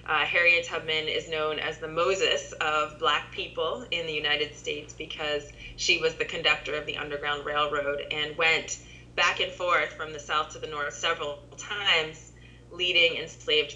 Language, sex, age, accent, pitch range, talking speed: English, female, 20-39, American, 150-205 Hz, 170 wpm